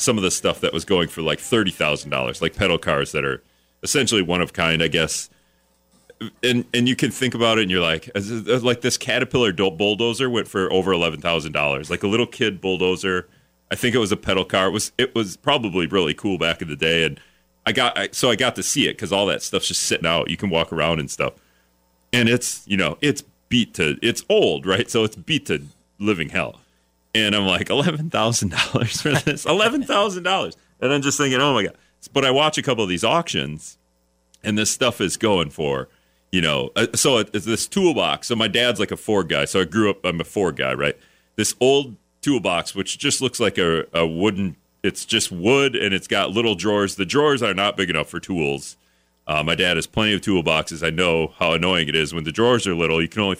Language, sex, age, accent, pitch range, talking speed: English, male, 30-49, American, 80-115 Hz, 220 wpm